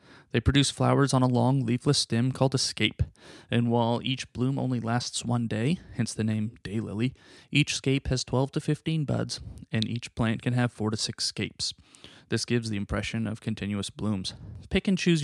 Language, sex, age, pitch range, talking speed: English, male, 20-39, 110-135 Hz, 195 wpm